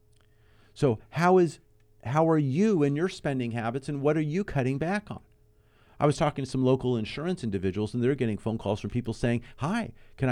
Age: 50-69